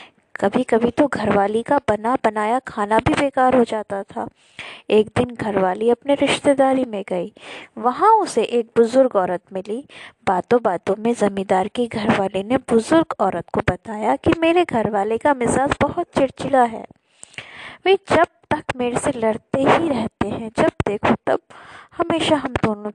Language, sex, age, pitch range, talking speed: Hindi, female, 20-39, 210-295 Hz, 155 wpm